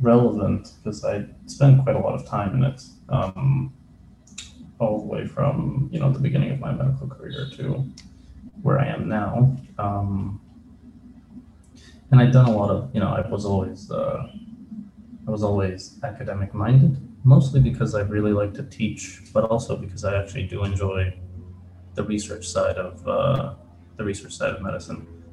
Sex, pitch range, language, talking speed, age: male, 95-130 Hz, English, 170 wpm, 20-39